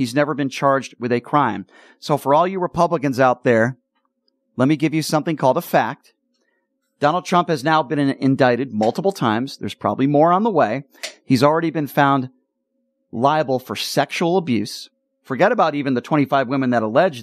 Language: English